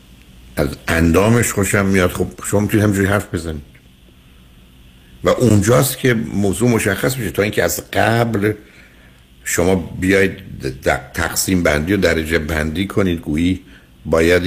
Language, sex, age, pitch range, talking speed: Persian, male, 60-79, 75-105 Hz, 125 wpm